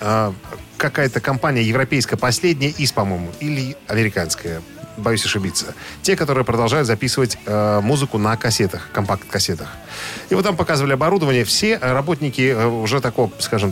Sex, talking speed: male, 125 wpm